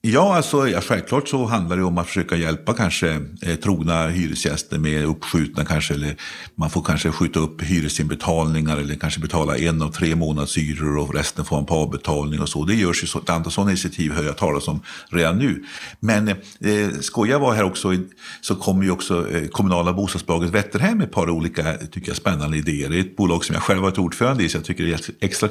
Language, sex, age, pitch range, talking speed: Swedish, male, 50-69, 80-95 Hz, 215 wpm